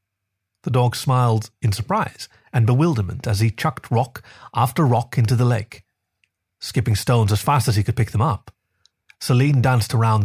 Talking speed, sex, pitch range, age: 170 wpm, male, 105-130 Hz, 30-49